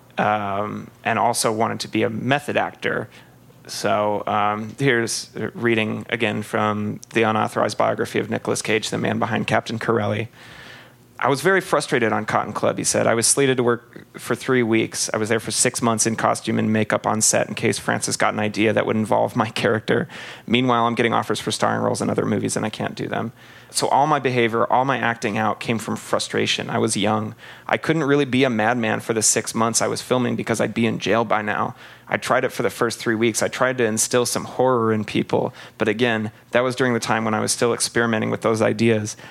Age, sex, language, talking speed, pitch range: 30-49, male, English, 225 wpm, 110-125 Hz